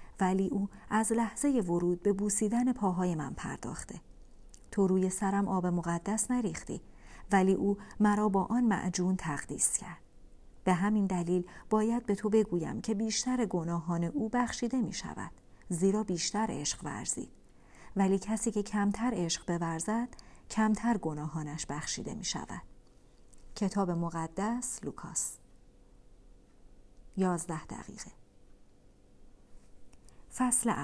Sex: female